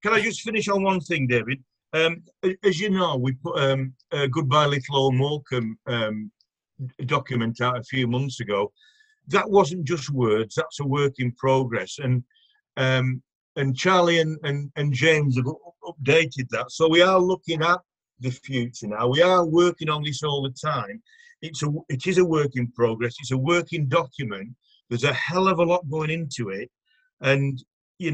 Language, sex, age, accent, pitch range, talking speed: English, male, 50-69, British, 130-165 Hz, 185 wpm